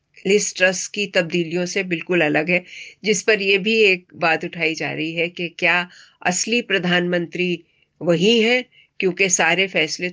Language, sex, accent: Hindi, female, native